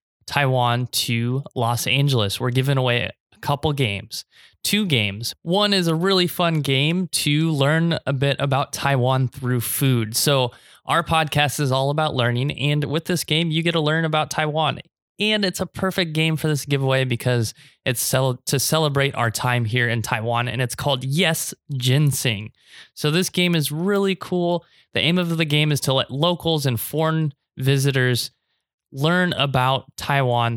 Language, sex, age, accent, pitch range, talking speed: English, male, 20-39, American, 120-155 Hz, 170 wpm